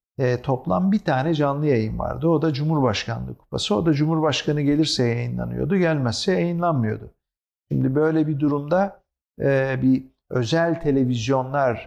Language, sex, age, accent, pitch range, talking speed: Turkish, male, 50-69, native, 120-155 Hz, 120 wpm